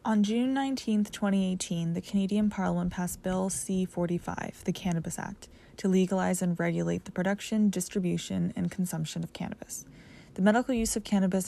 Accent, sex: American, female